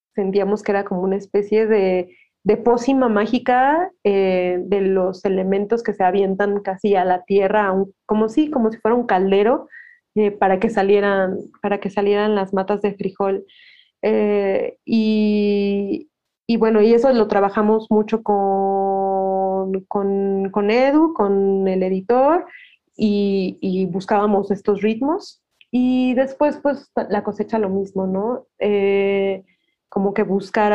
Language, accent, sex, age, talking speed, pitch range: Spanish, Mexican, female, 30-49, 140 wpm, 195-225 Hz